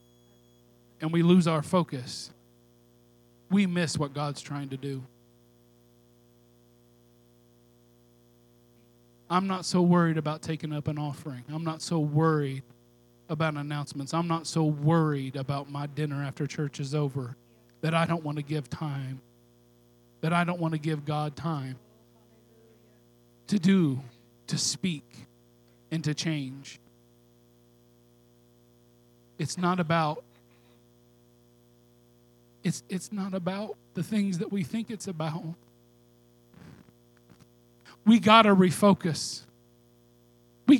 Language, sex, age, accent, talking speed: English, male, 40-59, American, 115 wpm